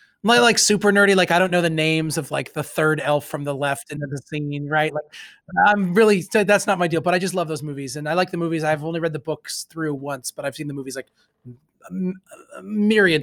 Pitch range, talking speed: 150-195 Hz, 250 wpm